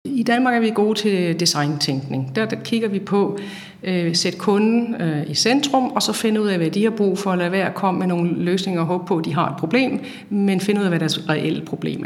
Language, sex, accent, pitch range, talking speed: Danish, female, native, 170-210 Hz, 250 wpm